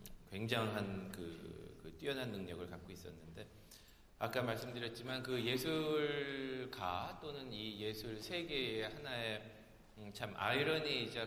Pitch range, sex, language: 100-130 Hz, male, Korean